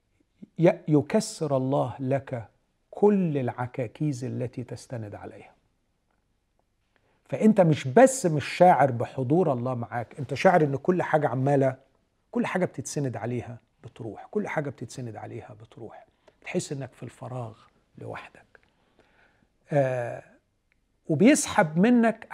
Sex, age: male, 50-69